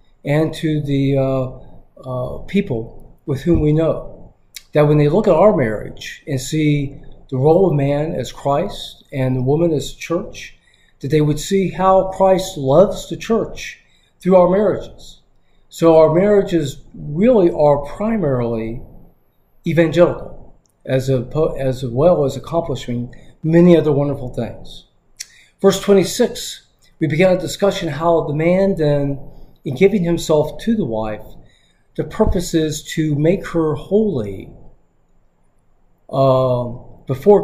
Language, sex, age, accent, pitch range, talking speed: English, male, 50-69, American, 135-175 Hz, 135 wpm